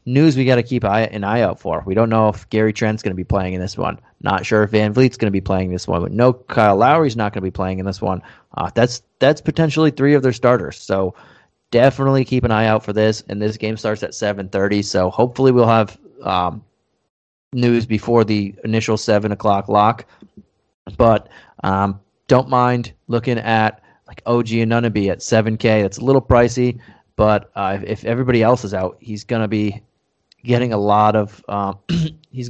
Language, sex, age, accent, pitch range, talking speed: English, male, 30-49, American, 105-120 Hz, 200 wpm